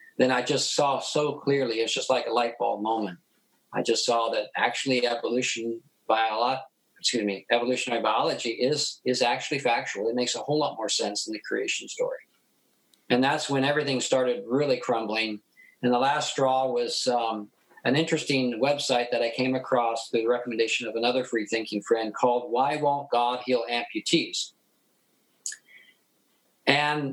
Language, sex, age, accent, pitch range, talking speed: English, male, 50-69, American, 120-145 Hz, 165 wpm